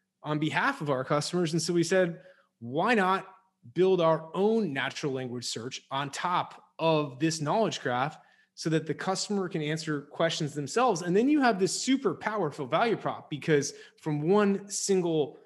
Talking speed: 170 wpm